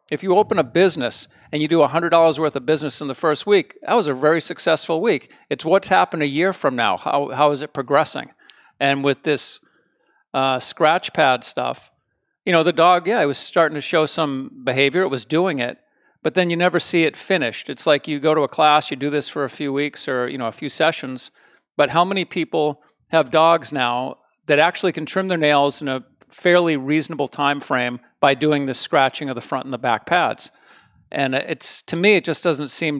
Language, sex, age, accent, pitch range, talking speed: English, male, 50-69, American, 140-170 Hz, 220 wpm